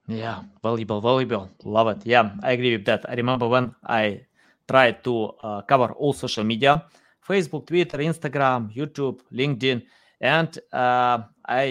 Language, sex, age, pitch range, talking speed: English, male, 20-39, 115-150 Hz, 145 wpm